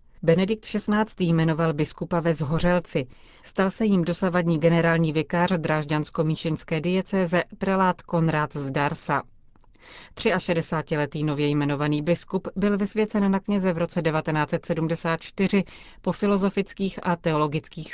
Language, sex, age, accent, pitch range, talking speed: Czech, female, 30-49, native, 150-180 Hz, 110 wpm